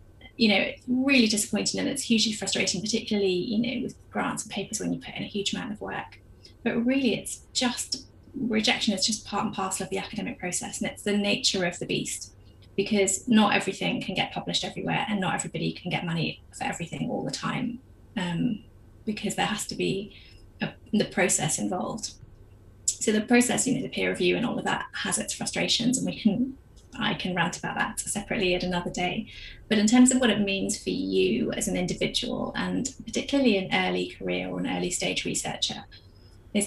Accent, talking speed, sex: British, 200 wpm, female